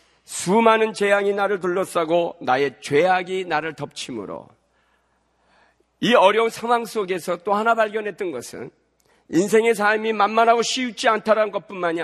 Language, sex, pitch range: Korean, male, 165-225 Hz